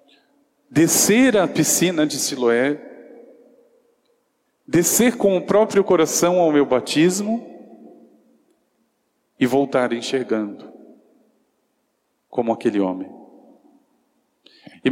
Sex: male